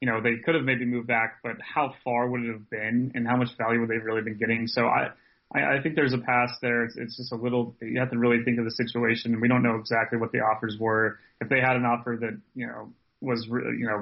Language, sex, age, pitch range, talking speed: English, male, 20-39, 115-125 Hz, 285 wpm